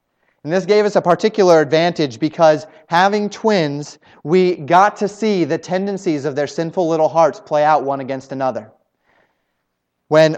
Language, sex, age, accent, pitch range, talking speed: English, male, 30-49, American, 150-180 Hz, 155 wpm